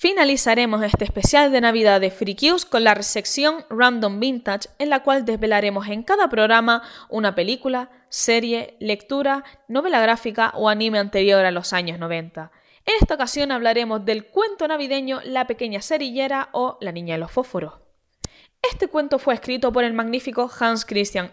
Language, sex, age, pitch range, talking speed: Spanish, female, 10-29, 200-285 Hz, 165 wpm